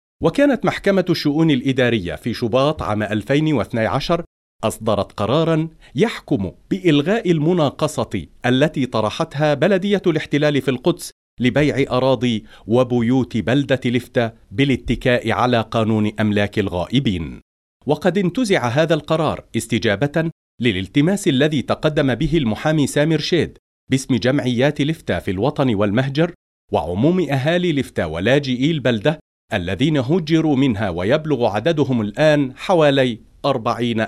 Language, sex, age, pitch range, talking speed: Arabic, male, 40-59, 115-155 Hz, 105 wpm